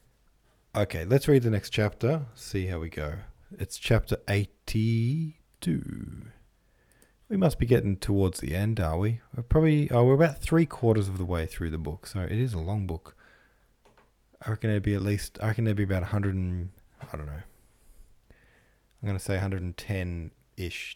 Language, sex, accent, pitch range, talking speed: English, male, Australian, 90-120 Hz, 190 wpm